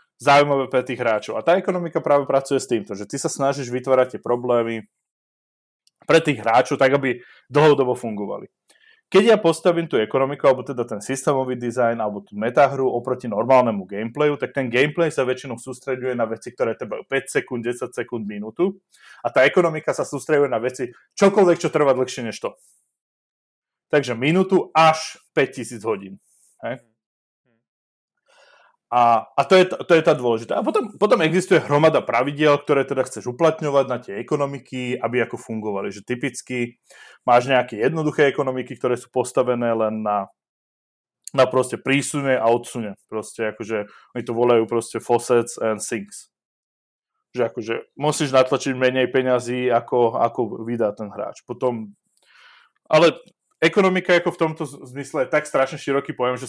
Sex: male